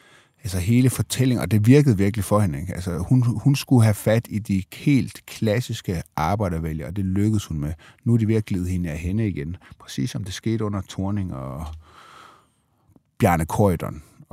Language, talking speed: Danish, 190 wpm